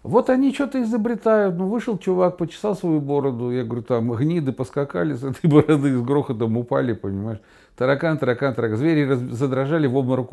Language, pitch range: Russian, 135-175 Hz